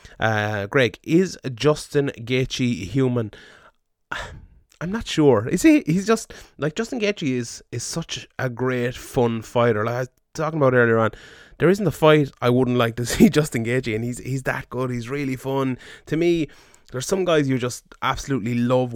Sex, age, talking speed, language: male, 20-39, 185 wpm, English